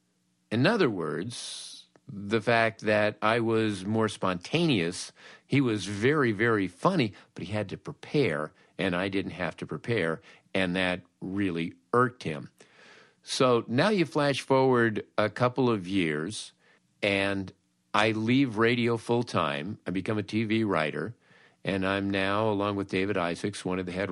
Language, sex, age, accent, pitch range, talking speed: English, male, 50-69, American, 95-120 Hz, 150 wpm